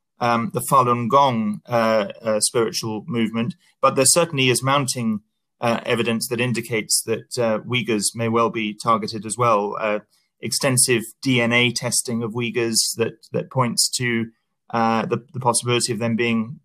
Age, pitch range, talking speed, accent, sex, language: 30-49, 115-135 Hz, 155 wpm, British, male, English